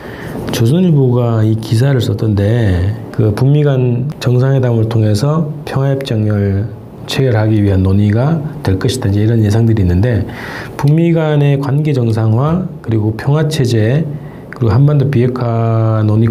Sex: male